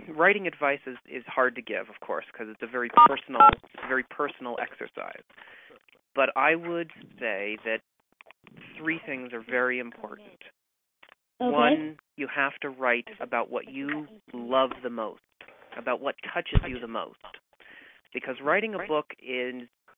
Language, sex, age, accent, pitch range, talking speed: English, male, 40-59, American, 125-155 Hz, 155 wpm